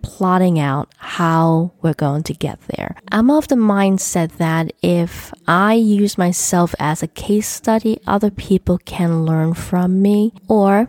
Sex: female